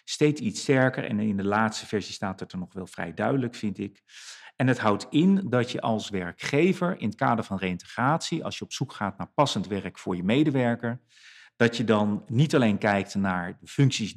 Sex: male